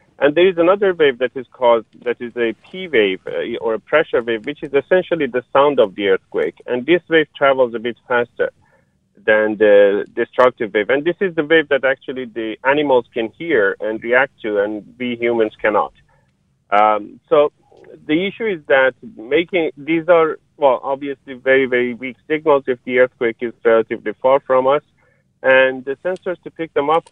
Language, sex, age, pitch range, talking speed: English, male, 40-59, 120-155 Hz, 185 wpm